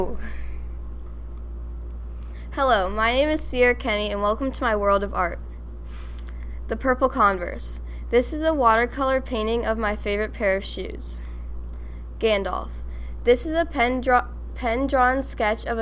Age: 10-29